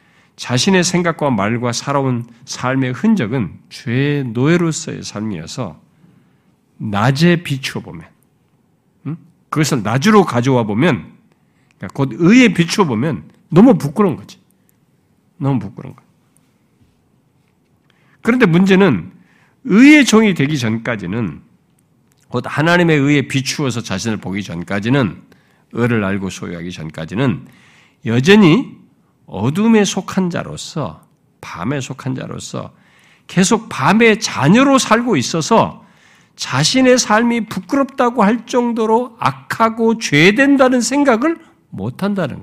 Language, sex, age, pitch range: Korean, male, 50-69, 125-205 Hz